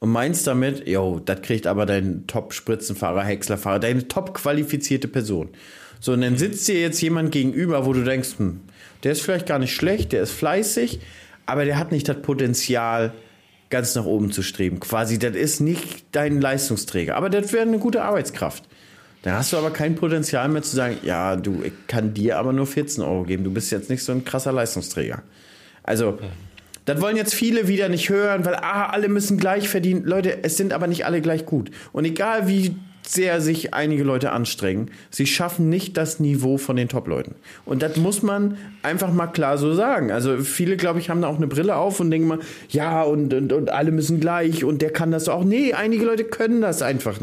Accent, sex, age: German, male, 30-49